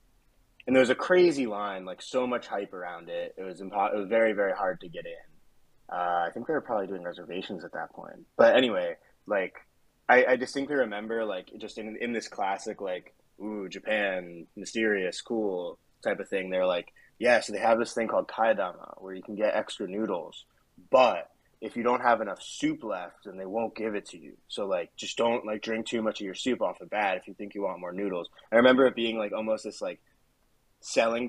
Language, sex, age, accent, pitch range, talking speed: English, male, 20-39, American, 95-120 Hz, 225 wpm